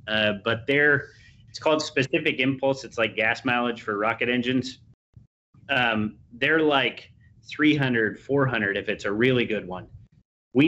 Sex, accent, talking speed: male, American, 145 wpm